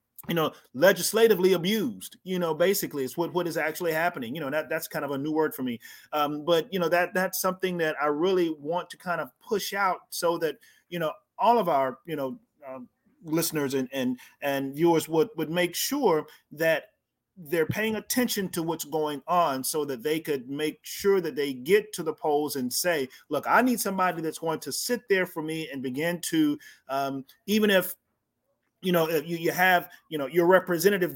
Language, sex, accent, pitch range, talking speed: English, male, American, 155-190 Hz, 205 wpm